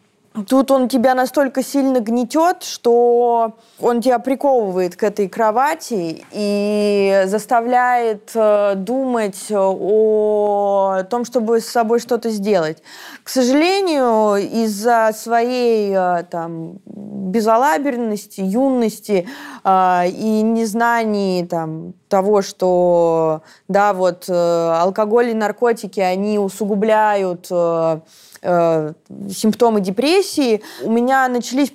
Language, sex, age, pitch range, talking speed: Russian, female, 20-39, 185-235 Hz, 85 wpm